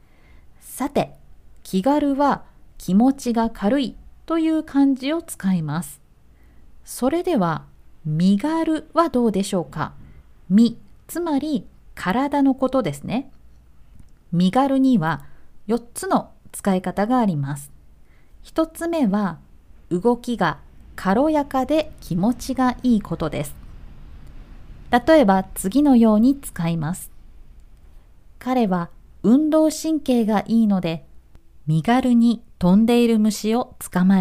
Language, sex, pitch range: Japanese, female, 160-265 Hz